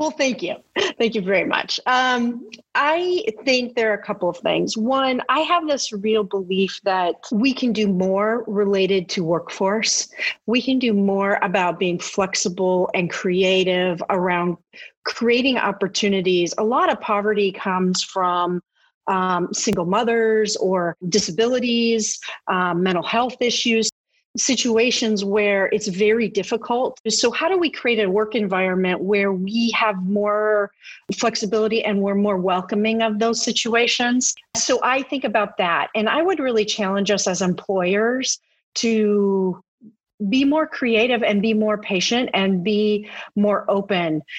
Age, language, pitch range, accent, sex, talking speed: 40-59, English, 190-235 Hz, American, female, 145 wpm